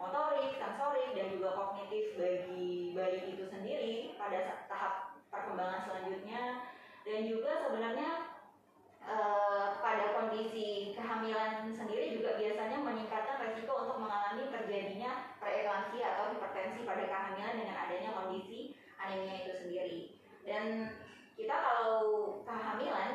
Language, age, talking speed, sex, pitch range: Indonesian, 20-39, 110 wpm, female, 195-230 Hz